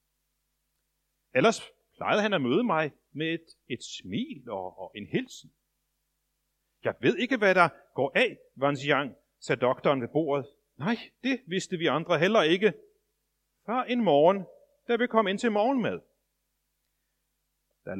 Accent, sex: native, male